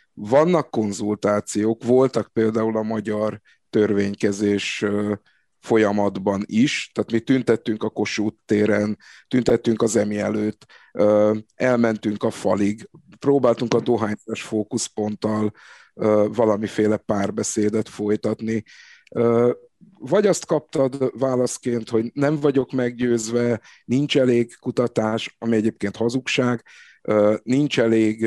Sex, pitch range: male, 110-130 Hz